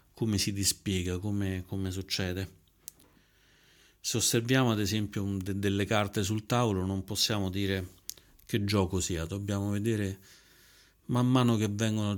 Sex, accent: male, native